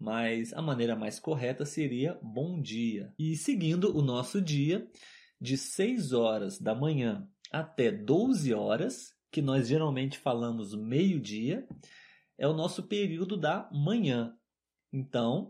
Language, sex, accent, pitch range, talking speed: Portuguese, male, Brazilian, 125-195 Hz, 130 wpm